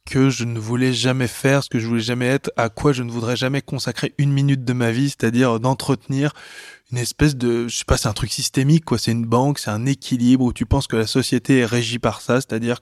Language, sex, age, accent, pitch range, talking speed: French, male, 20-39, French, 115-140 Hz, 255 wpm